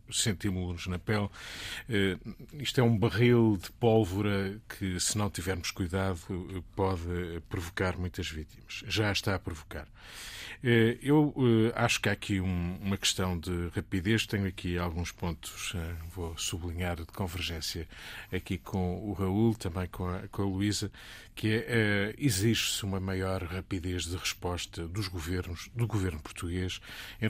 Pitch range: 90-110 Hz